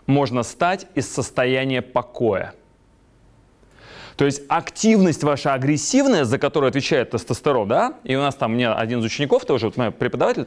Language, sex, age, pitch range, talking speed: Russian, male, 20-39, 115-160 Hz, 155 wpm